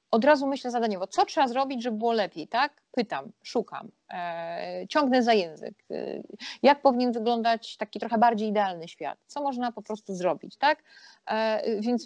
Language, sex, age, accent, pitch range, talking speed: Polish, female, 30-49, native, 185-230 Hz, 155 wpm